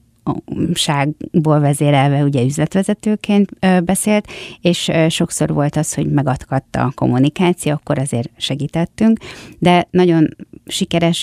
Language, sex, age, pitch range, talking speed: Hungarian, female, 30-49, 150-180 Hz, 100 wpm